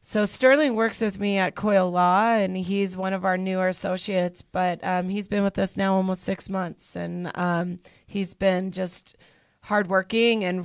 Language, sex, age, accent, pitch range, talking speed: English, female, 30-49, American, 180-205 Hz, 180 wpm